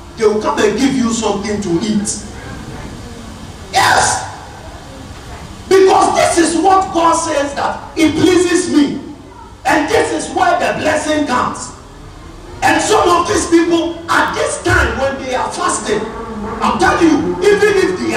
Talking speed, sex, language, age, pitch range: 150 wpm, male, English, 50-69, 275-380 Hz